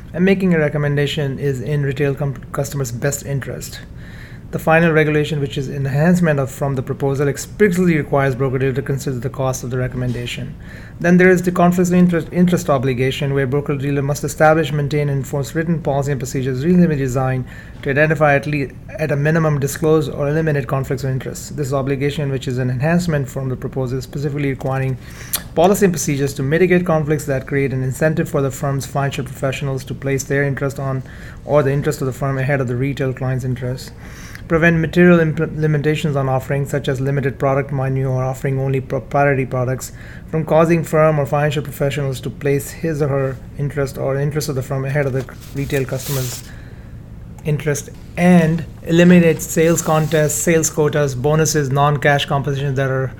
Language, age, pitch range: English, 30-49, 135-155 Hz